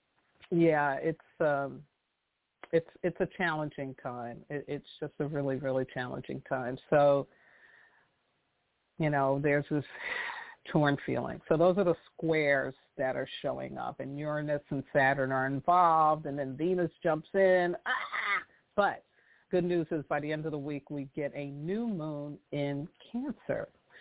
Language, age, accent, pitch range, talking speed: English, 50-69, American, 140-165 Hz, 150 wpm